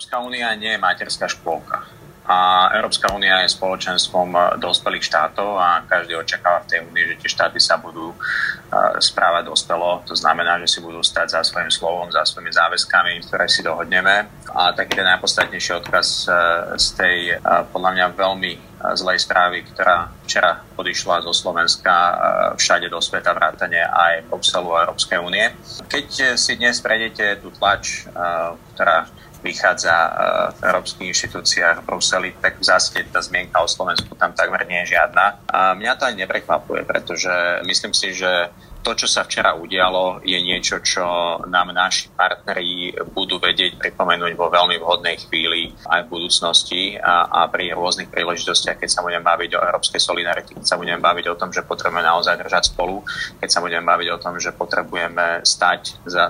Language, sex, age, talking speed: Slovak, male, 30-49, 165 wpm